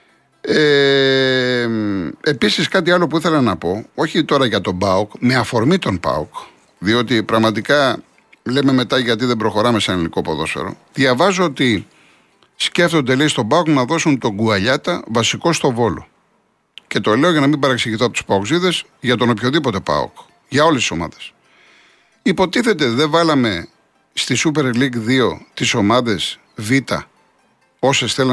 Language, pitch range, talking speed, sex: Greek, 115-170 Hz, 150 wpm, male